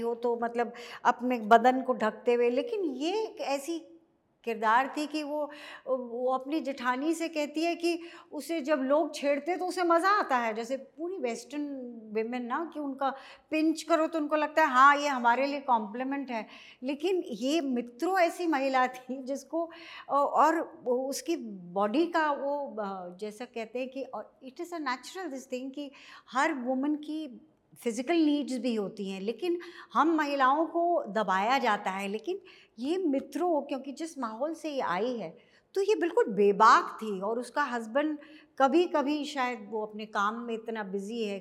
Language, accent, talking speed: Hindi, native, 170 wpm